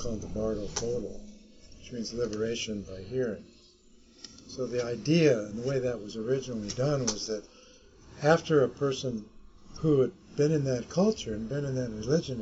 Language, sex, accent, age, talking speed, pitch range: English, male, American, 50-69, 170 wpm, 105-140 Hz